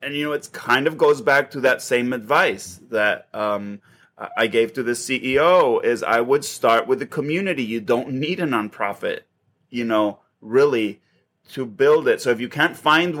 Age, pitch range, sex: 30-49, 110-130 Hz, male